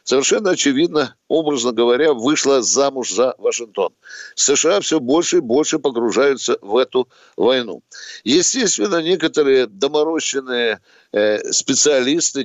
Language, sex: Russian, male